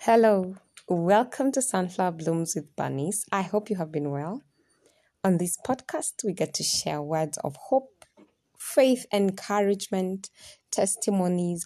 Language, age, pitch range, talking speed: English, 20-39, 155-195 Hz, 135 wpm